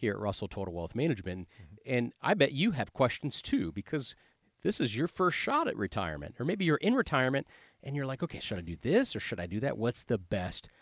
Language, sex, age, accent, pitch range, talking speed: English, male, 40-59, American, 105-160 Hz, 235 wpm